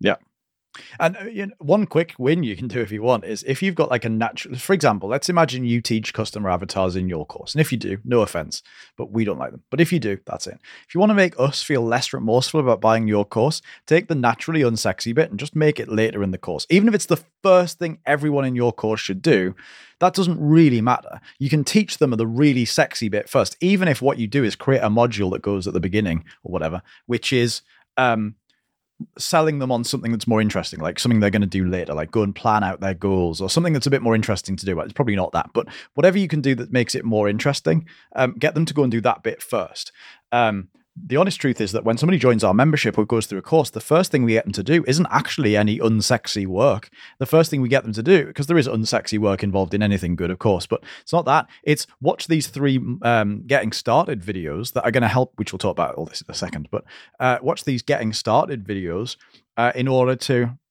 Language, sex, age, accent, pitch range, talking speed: English, male, 30-49, British, 105-150 Hz, 255 wpm